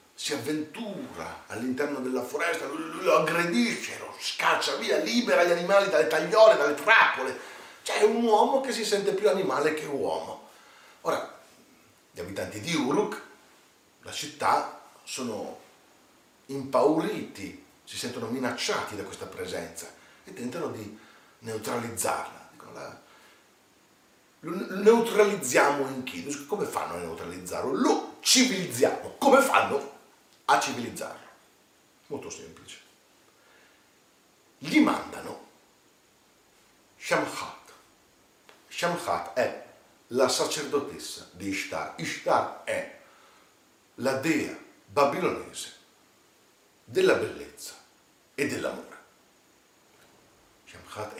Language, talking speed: Italian, 95 wpm